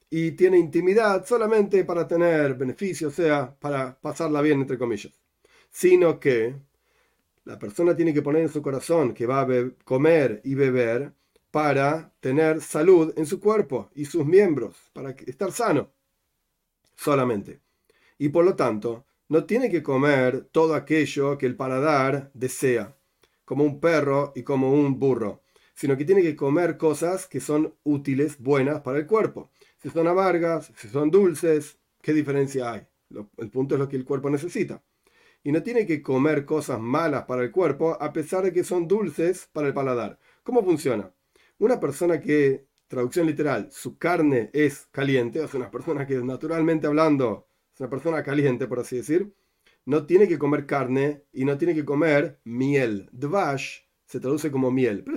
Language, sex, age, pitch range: Spanish, male, 40-59, 135-165 Hz